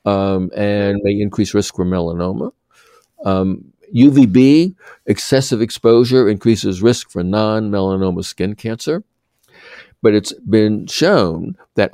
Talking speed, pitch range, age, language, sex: 110 wpm, 95-120 Hz, 60-79, English, male